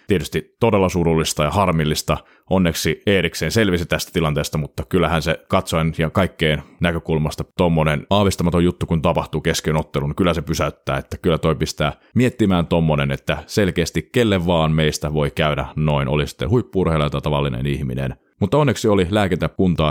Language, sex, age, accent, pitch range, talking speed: Finnish, male, 30-49, native, 80-95 Hz, 150 wpm